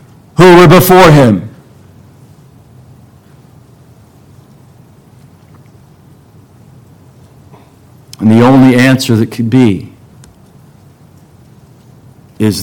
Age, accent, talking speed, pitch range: 50-69, American, 55 wpm, 120-145 Hz